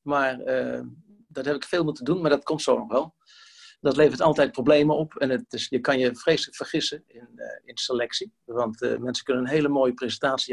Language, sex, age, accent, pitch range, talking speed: Dutch, male, 50-69, Dutch, 125-150 Hz, 210 wpm